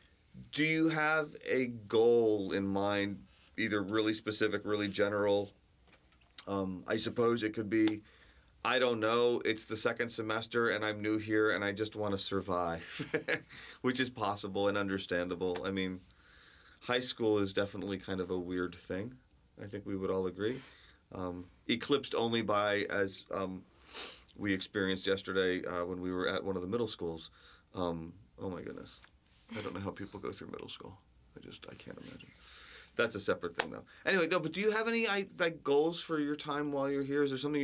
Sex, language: male, English